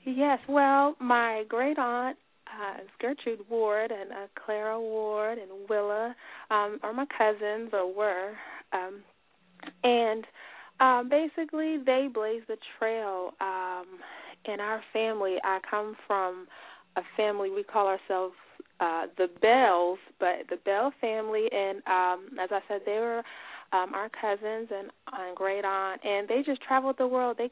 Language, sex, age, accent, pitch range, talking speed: English, female, 30-49, American, 200-240 Hz, 145 wpm